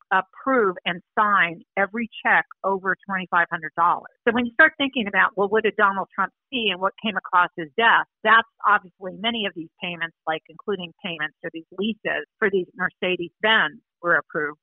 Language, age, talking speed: English, 50-69, 170 wpm